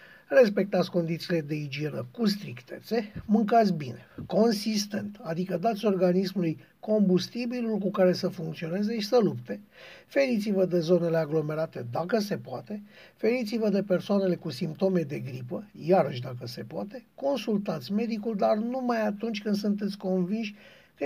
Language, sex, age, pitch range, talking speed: Romanian, male, 50-69, 175-220 Hz, 135 wpm